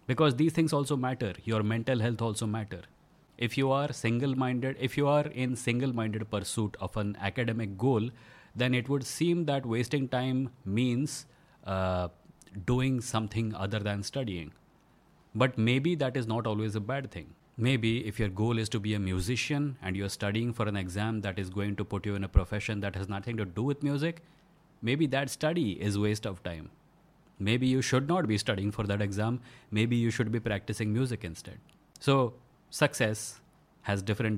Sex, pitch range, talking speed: male, 105-135 Hz, 185 wpm